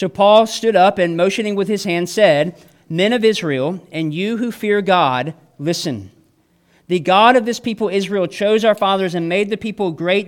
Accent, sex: American, male